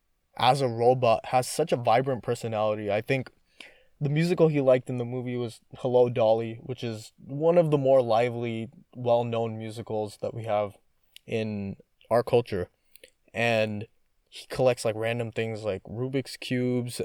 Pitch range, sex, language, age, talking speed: 105-125 Hz, male, English, 20-39, 155 wpm